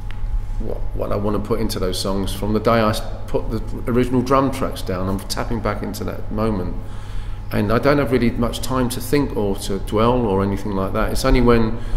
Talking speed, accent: 215 wpm, British